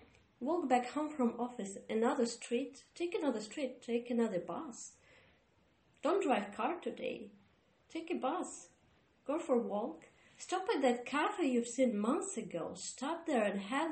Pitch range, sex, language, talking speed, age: 205-265 Hz, female, English, 155 wpm, 30-49